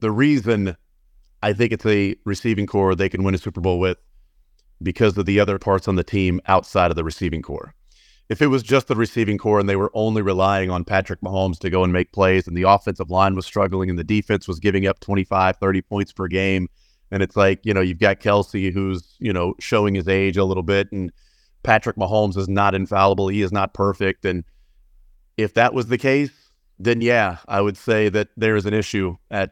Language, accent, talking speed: English, American, 220 wpm